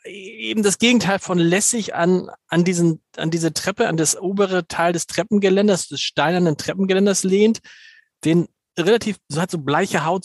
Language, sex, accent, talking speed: German, male, German, 165 wpm